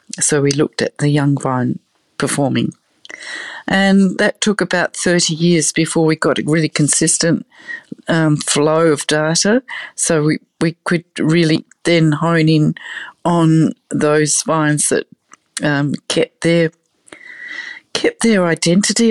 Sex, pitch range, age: female, 150-180 Hz, 40-59